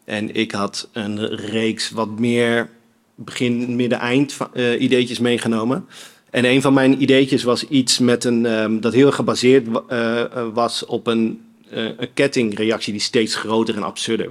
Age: 40-59